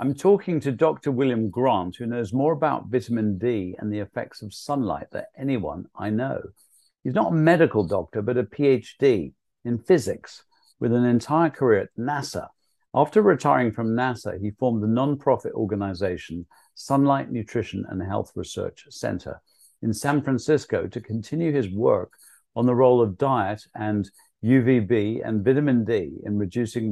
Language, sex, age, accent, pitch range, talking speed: English, male, 50-69, British, 100-135 Hz, 160 wpm